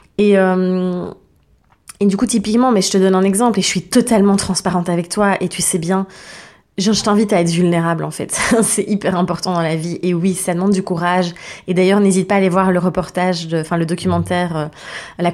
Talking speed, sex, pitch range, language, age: 225 wpm, female, 180-210 Hz, French, 20-39